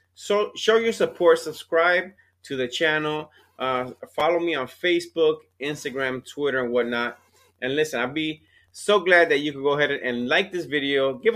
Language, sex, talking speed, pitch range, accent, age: English, male, 175 wpm, 125-175 Hz, American, 30-49